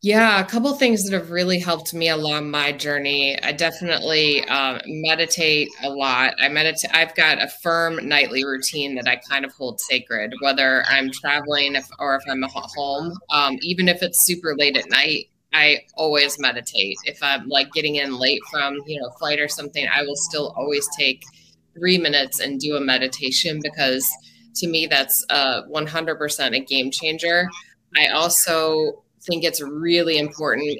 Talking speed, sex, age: 175 wpm, female, 20-39